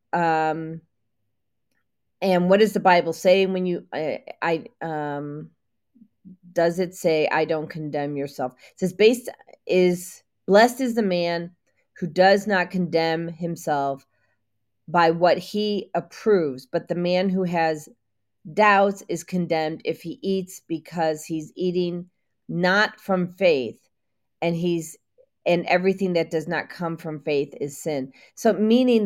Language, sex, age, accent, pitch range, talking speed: English, female, 40-59, American, 150-190 Hz, 140 wpm